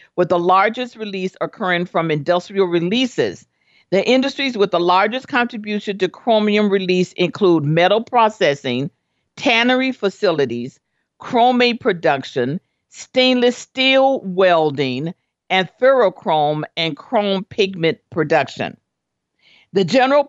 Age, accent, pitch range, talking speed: 50-69, American, 160-220 Hz, 105 wpm